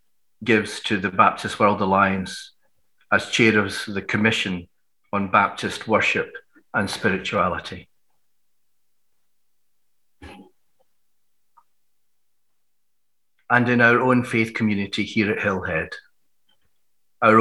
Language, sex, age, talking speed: English, male, 40-59, 90 wpm